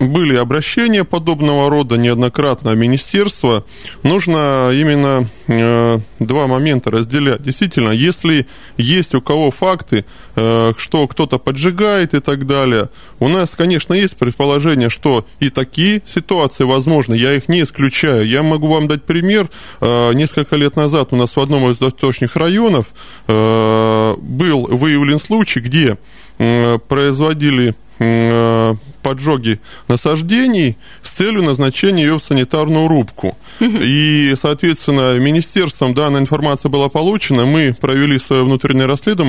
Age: 20-39